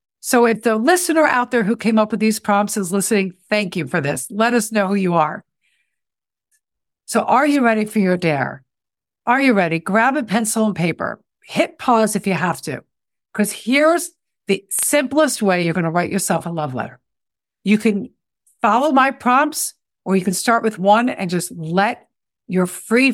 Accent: American